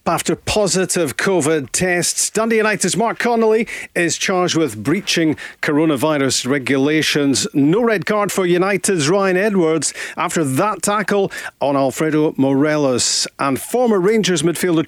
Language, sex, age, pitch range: English, male, 40-59, 140-175 Hz